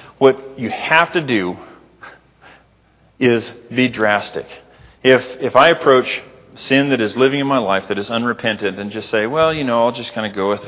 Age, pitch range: 40-59, 100-130 Hz